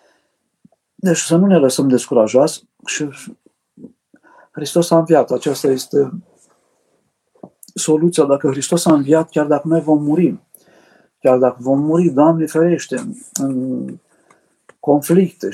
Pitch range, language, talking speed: 130-160 Hz, Romanian, 115 wpm